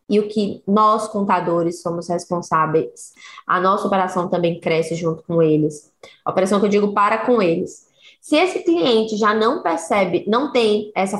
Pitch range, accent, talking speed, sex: 180-235 Hz, Brazilian, 170 wpm, female